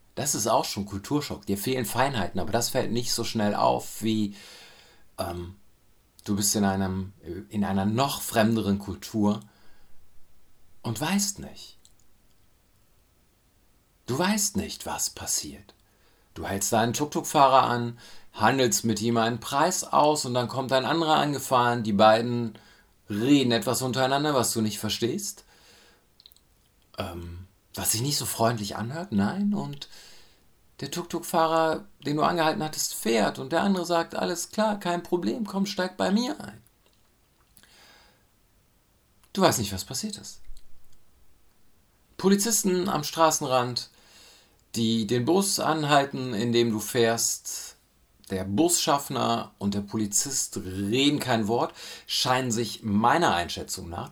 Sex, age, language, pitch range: male, 50-69, German, 100-150 Hz